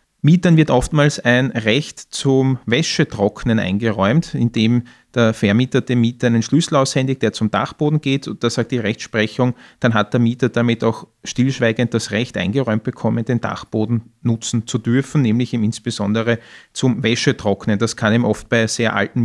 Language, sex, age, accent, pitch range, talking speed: German, male, 30-49, Austrian, 110-140 Hz, 160 wpm